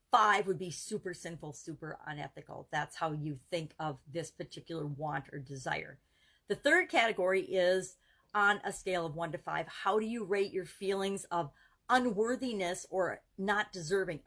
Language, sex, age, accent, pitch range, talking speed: English, female, 50-69, American, 175-215 Hz, 165 wpm